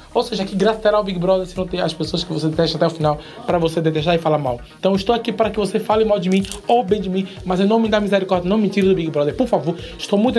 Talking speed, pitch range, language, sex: 325 wpm, 165-220 Hz, Portuguese, male